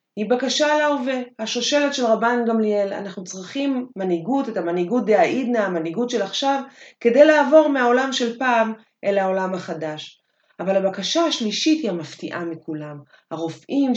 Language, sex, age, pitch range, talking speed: Hebrew, female, 30-49, 175-240 Hz, 135 wpm